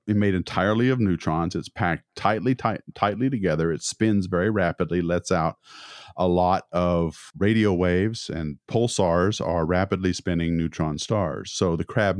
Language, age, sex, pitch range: English, 40-59, male, 85-105 Hz